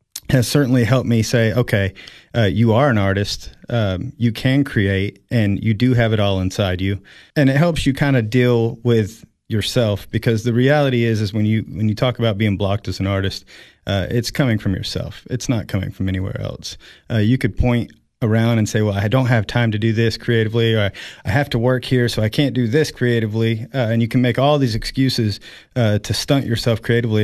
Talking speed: 220 wpm